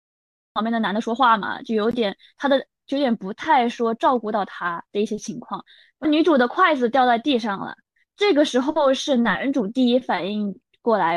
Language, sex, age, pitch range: Chinese, female, 20-39, 220-275 Hz